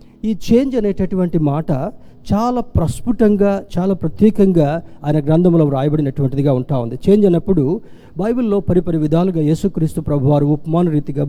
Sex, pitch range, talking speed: male, 155-205 Hz, 110 wpm